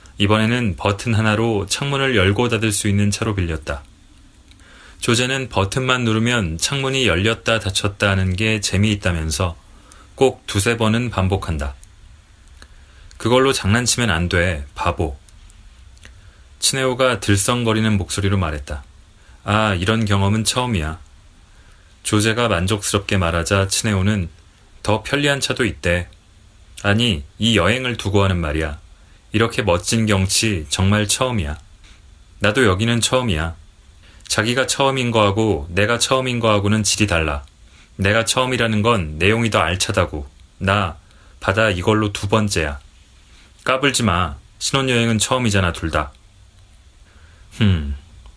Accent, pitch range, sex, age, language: native, 85-110 Hz, male, 30-49, Korean